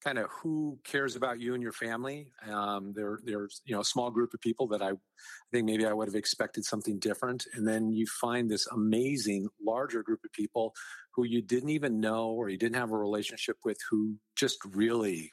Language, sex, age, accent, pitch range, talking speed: English, male, 50-69, American, 100-120 Hz, 215 wpm